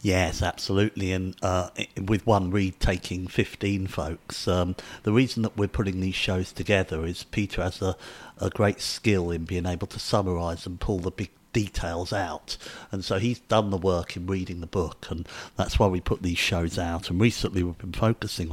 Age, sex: 50-69, male